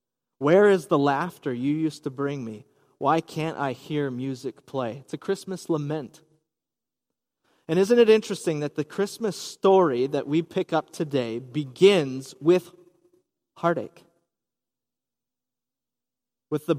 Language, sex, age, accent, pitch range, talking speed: English, male, 30-49, American, 140-190 Hz, 130 wpm